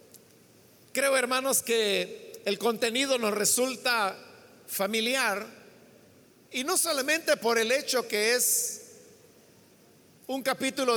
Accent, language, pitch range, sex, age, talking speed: Mexican, Spanish, 210-270 Hz, male, 50-69, 100 wpm